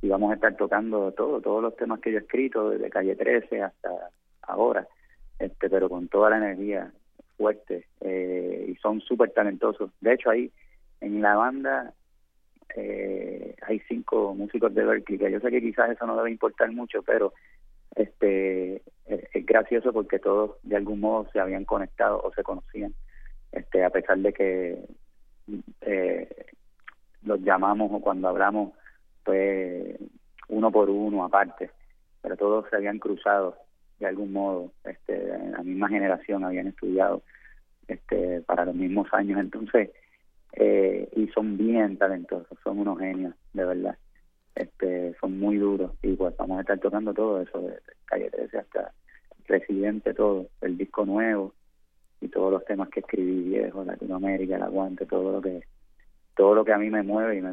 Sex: male